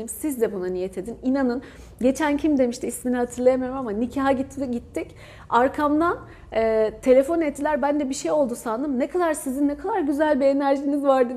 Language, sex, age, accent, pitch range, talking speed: Turkish, female, 40-59, native, 225-280 Hz, 170 wpm